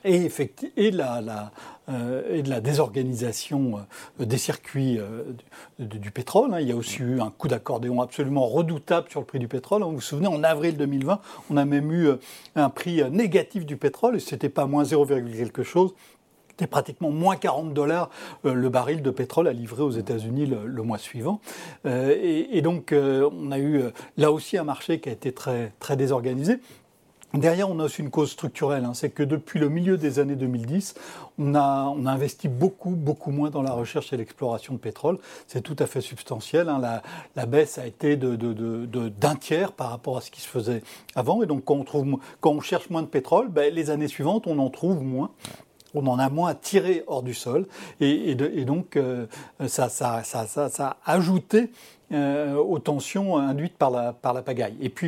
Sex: male